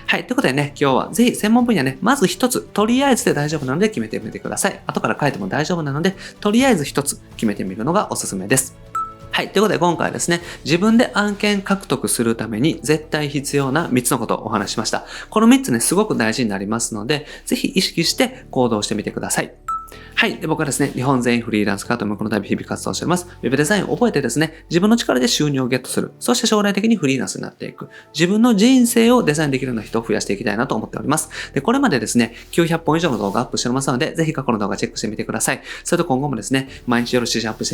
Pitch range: 115-185 Hz